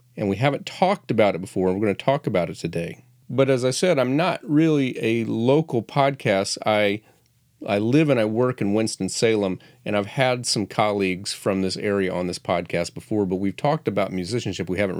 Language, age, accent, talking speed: English, 40-59, American, 205 wpm